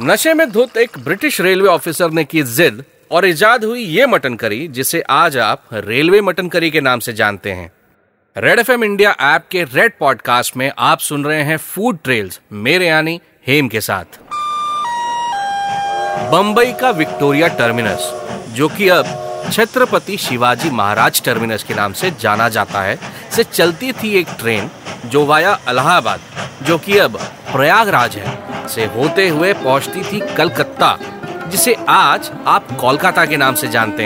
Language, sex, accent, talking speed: Hindi, male, native, 160 wpm